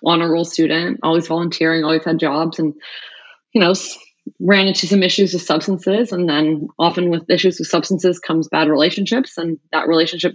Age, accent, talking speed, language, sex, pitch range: 20-39, American, 175 wpm, English, female, 155-180 Hz